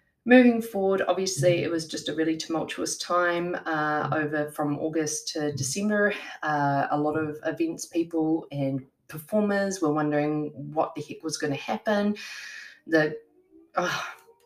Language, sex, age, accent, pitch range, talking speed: English, female, 20-39, Australian, 140-190 Hz, 145 wpm